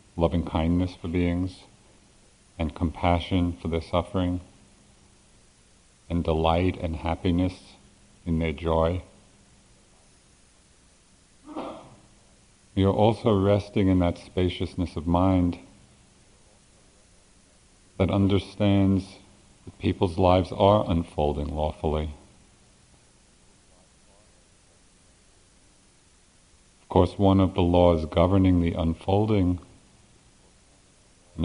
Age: 50-69